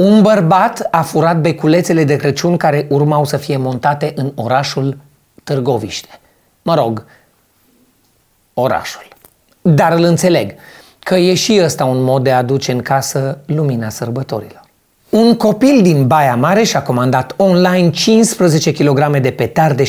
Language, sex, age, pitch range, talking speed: Romanian, male, 30-49, 125-160 Hz, 140 wpm